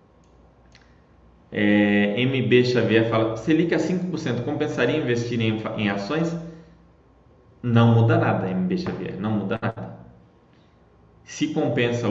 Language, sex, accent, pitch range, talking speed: Portuguese, male, Brazilian, 105-125 Hz, 110 wpm